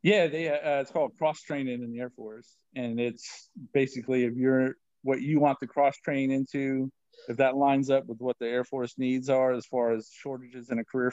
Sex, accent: male, American